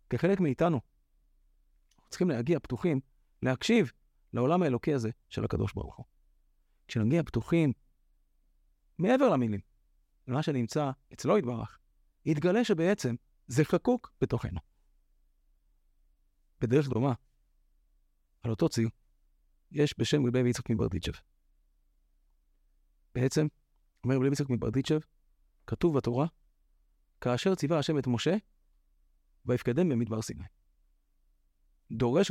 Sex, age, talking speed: male, 30-49, 100 wpm